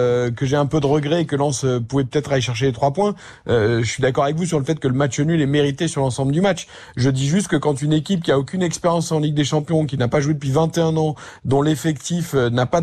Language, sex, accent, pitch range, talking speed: French, male, French, 135-165 Hz, 285 wpm